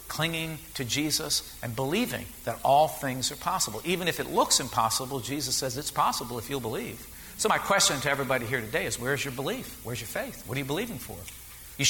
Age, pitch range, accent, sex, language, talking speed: 50-69, 130-170 Hz, American, male, English, 210 wpm